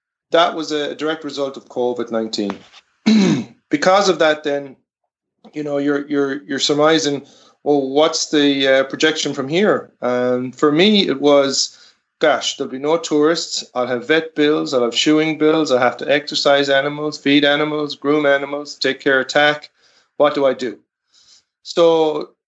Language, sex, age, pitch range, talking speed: English, male, 30-49, 130-155 Hz, 160 wpm